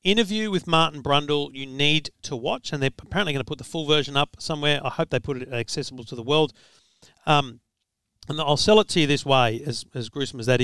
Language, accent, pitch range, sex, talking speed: English, Australian, 125-160 Hz, male, 235 wpm